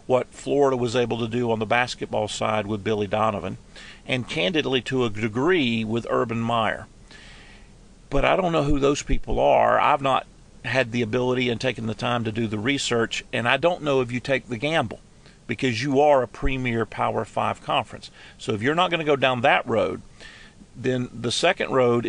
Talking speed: 200 wpm